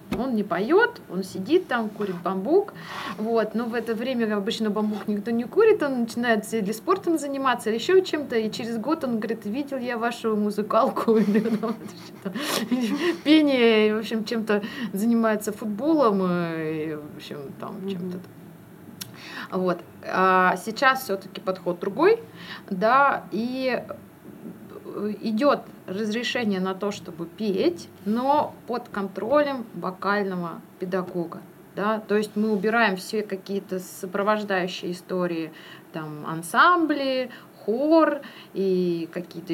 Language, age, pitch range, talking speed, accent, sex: Russian, 20-39, 185-235 Hz, 115 wpm, native, female